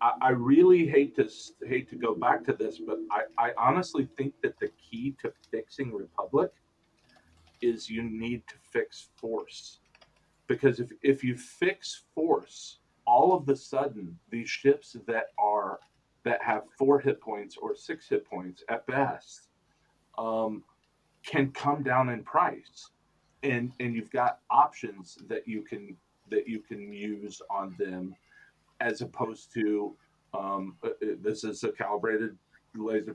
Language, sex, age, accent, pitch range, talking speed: English, male, 40-59, American, 100-145 Hz, 145 wpm